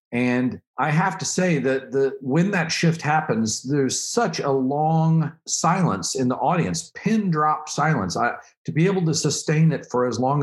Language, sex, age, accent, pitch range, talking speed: English, male, 50-69, American, 125-165 Hz, 185 wpm